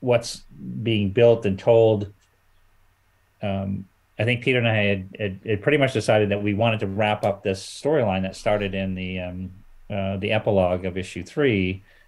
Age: 40-59